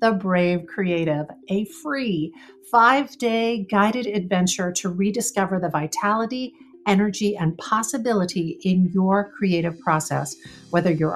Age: 50-69